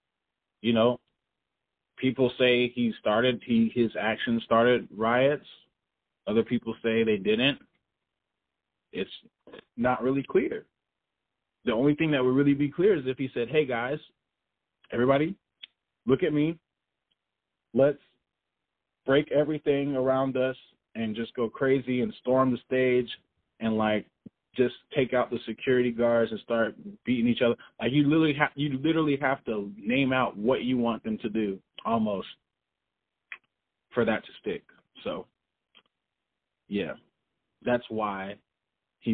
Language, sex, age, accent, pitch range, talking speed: English, male, 30-49, American, 110-135 Hz, 135 wpm